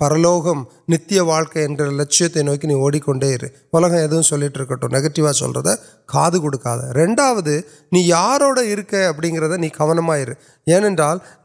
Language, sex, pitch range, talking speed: Urdu, male, 140-170 Hz, 70 wpm